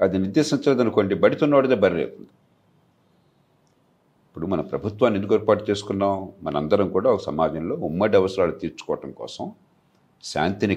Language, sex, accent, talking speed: Telugu, male, native, 110 wpm